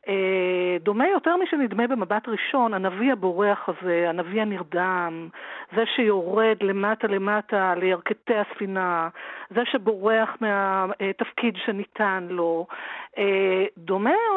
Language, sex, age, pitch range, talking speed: Hebrew, female, 50-69, 190-240 Hz, 90 wpm